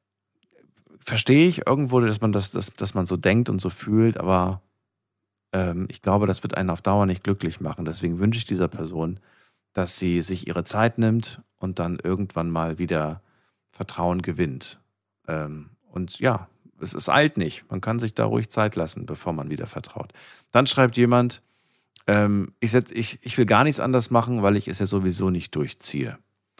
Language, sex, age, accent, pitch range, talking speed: German, male, 40-59, German, 90-115 Hz, 185 wpm